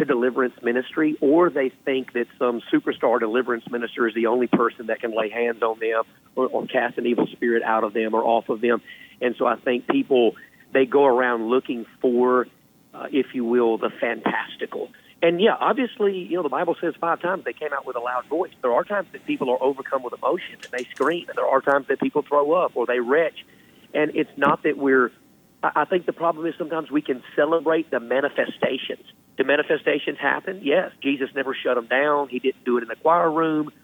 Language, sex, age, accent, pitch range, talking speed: English, male, 40-59, American, 125-150 Hz, 220 wpm